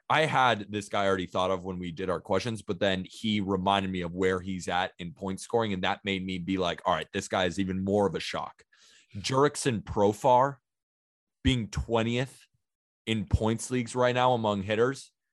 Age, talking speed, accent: 20-39, 200 wpm, American